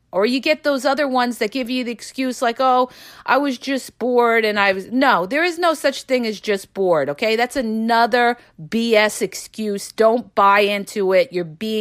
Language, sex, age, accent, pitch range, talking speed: English, female, 40-59, American, 200-255 Hz, 200 wpm